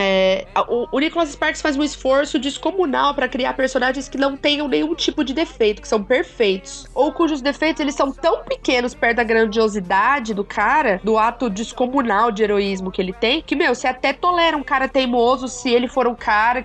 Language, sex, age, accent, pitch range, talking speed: Portuguese, female, 20-39, Brazilian, 220-320 Hz, 200 wpm